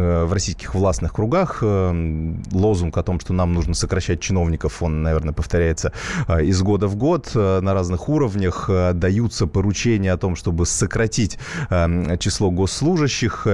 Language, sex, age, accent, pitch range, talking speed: Russian, male, 30-49, native, 90-115 Hz, 135 wpm